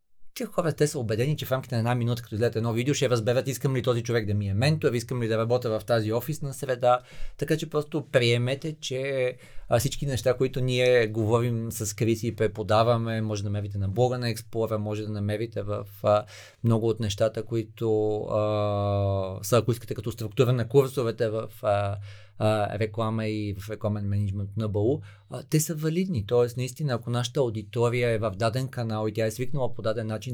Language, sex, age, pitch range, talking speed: Bulgarian, male, 30-49, 110-130 Hz, 200 wpm